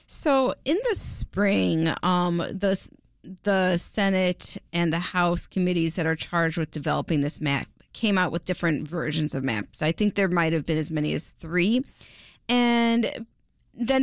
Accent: American